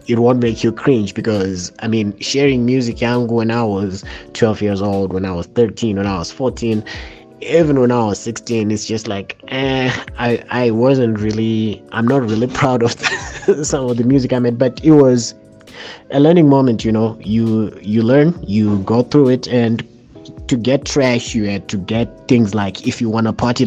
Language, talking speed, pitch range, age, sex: English, 200 wpm, 100-130 Hz, 20-39, male